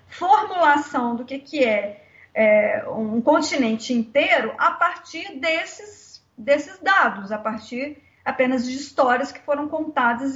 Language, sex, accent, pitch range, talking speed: Portuguese, female, Brazilian, 225-295 Hz, 125 wpm